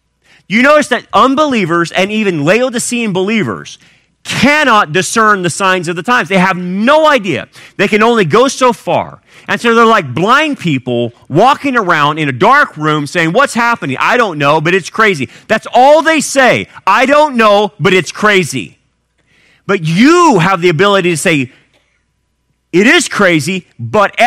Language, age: English, 40-59